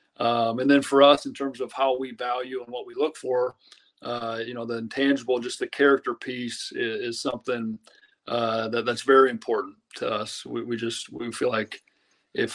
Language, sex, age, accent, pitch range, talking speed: English, male, 40-59, American, 115-135 Hz, 200 wpm